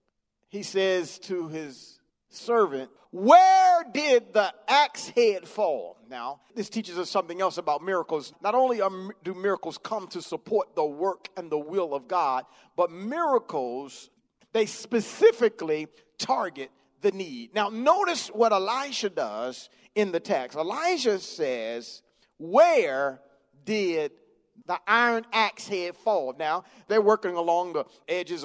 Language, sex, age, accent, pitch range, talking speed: English, male, 40-59, American, 185-275 Hz, 135 wpm